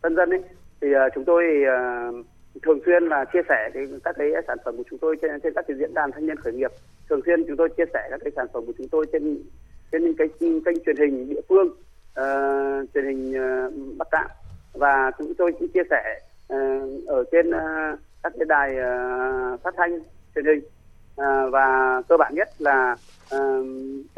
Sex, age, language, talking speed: male, 30-49, Vietnamese, 200 wpm